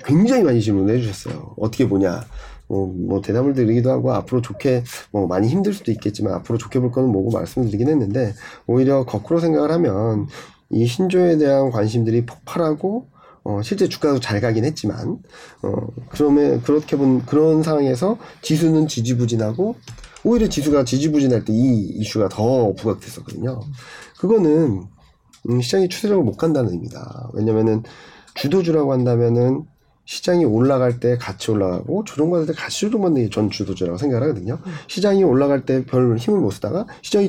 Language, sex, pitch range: Korean, male, 110-150 Hz